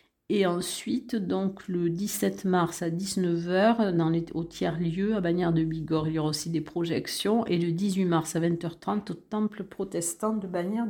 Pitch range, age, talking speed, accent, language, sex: 165-200 Hz, 50-69, 170 wpm, French, French, female